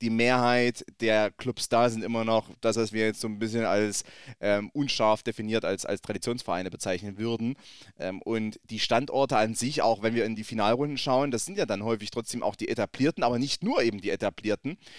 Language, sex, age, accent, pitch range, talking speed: German, male, 30-49, German, 115-140 Hz, 210 wpm